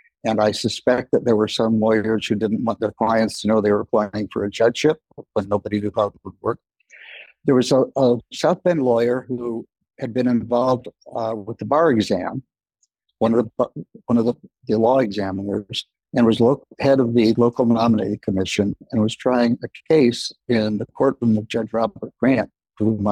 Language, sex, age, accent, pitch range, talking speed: English, male, 60-79, American, 110-130 Hz, 185 wpm